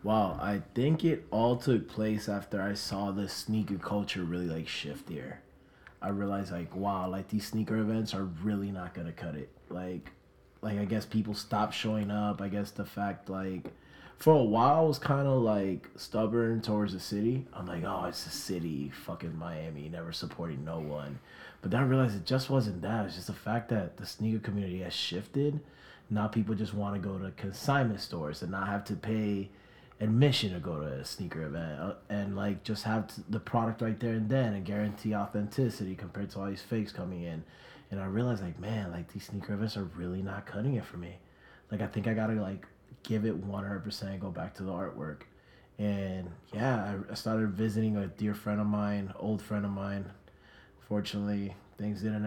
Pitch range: 95-110 Hz